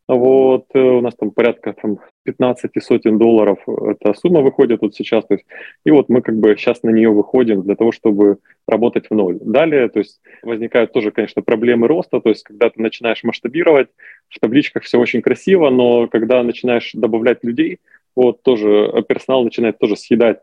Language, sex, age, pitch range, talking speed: Russian, male, 20-39, 110-125 Hz, 180 wpm